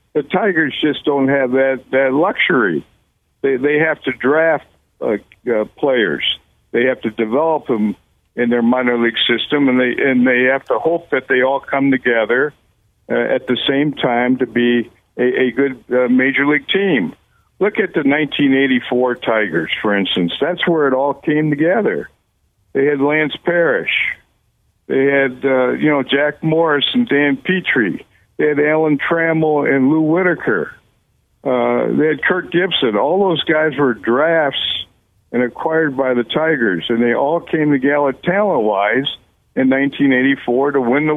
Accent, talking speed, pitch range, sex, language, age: American, 165 wpm, 125-160 Hz, male, English, 60-79